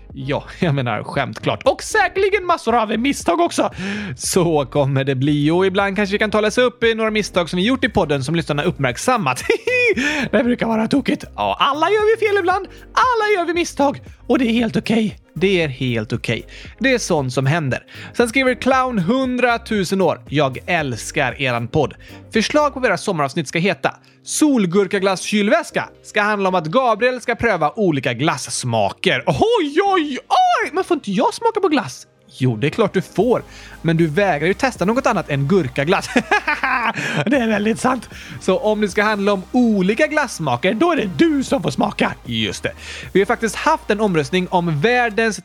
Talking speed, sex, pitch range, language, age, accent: 190 wpm, male, 170-270 Hz, Swedish, 30-49, native